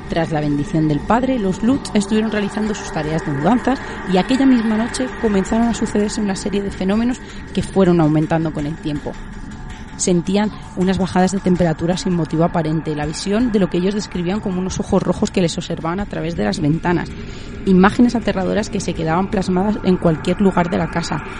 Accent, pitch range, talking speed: Spanish, 175-215 Hz, 195 wpm